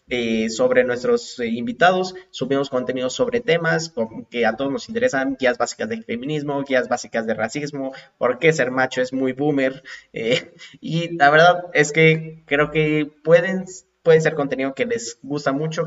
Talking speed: 175 wpm